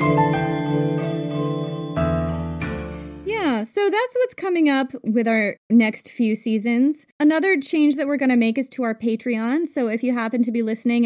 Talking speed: 150 wpm